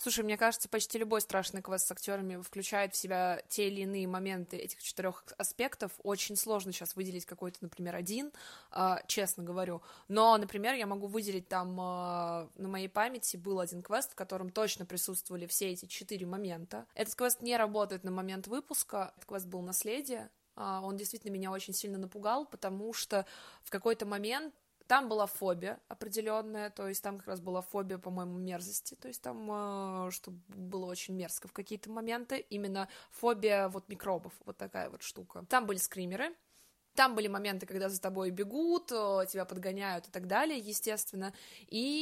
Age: 20-39